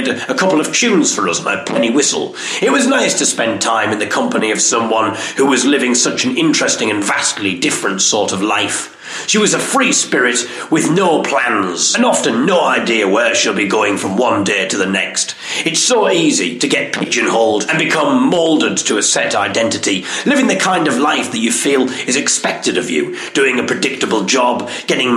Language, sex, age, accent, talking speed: English, male, 40-59, British, 200 wpm